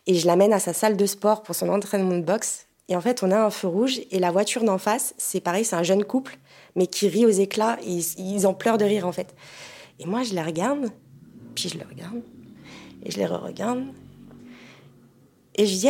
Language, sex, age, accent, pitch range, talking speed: French, female, 20-39, French, 180-240 Hz, 230 wpm